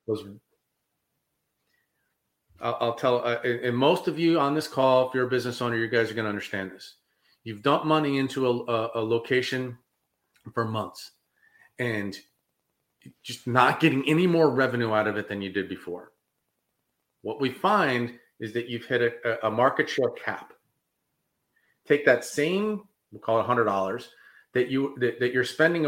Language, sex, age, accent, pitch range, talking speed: English, male, 40-59, American, 115-150 Hz, 165 wpm